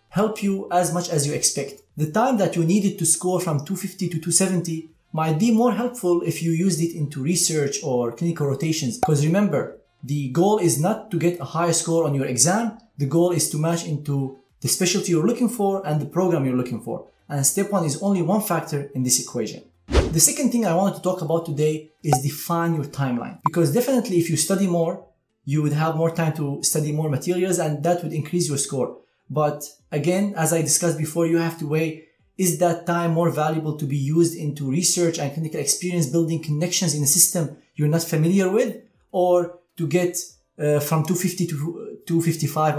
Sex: male